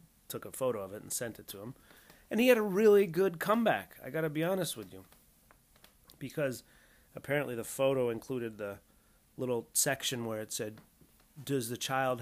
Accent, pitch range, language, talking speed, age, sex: American, 115-150 Hz, English, 185 wpm, 30-49, male